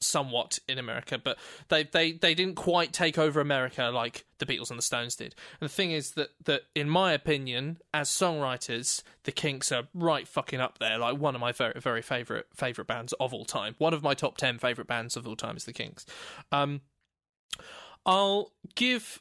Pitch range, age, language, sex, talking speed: 135-175 Hz, 20-39, English, male, 205 wpm